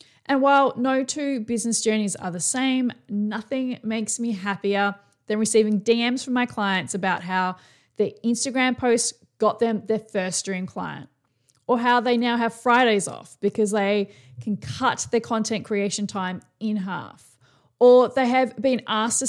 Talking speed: 165 wpm